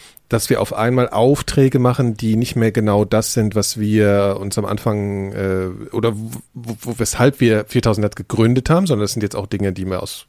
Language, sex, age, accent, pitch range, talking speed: German, male, 40-59, German, 100-120 Hz, 210 wpm